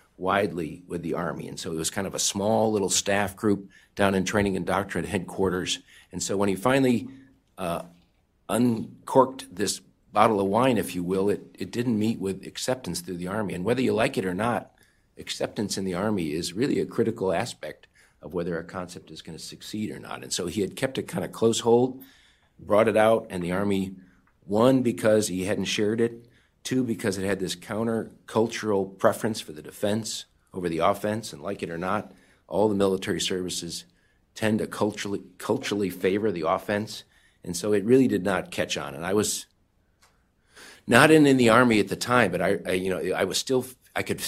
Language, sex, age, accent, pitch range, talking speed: English, male, 50-69, American, 95-115 Hz, 205 wpm